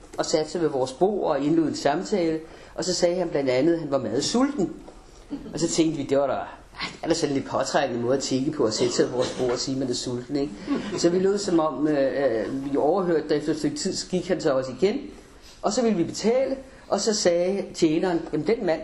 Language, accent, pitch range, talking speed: Danish, native, 140-190 Hz, 255 wpm